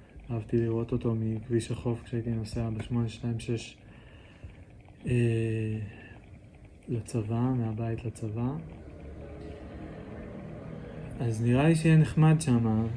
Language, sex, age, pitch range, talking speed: English, male, 20-39, 110-120 Hz, 90 wpm